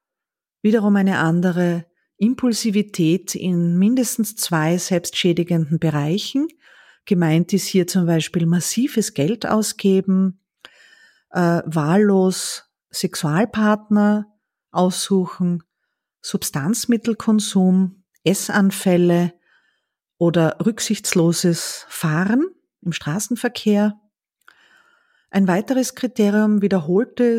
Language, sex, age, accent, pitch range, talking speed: German, female, 40-59, Austrian, 180-220 Hz, 70 wpm